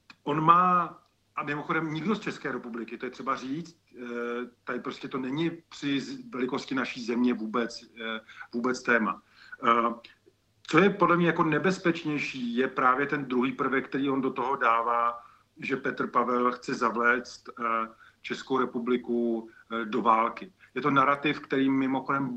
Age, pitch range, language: 40-59, 120-150 Hz, Slovak